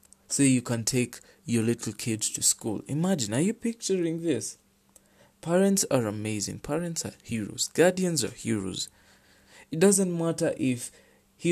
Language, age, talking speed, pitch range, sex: English, 20-39, 145 wpm, 110-155 Hz, male